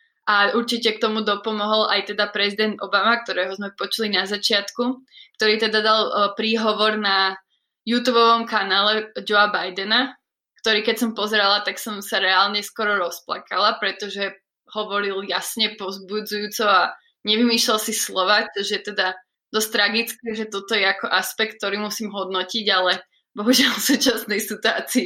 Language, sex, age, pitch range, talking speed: Slovak, female, 20-39, 200-230 Hz, 135 wpm